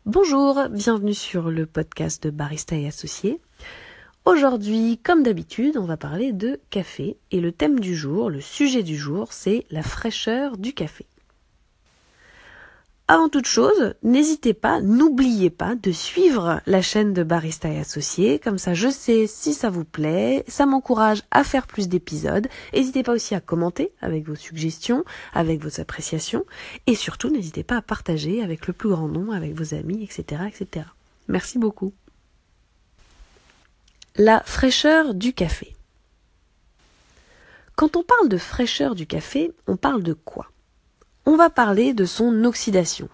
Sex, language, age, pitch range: female, French, 20-39, 170-245 Hz